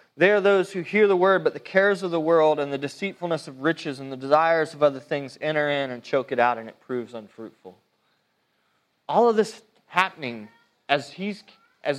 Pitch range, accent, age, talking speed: 135-190 Hz, American, 30-49, 205 wpm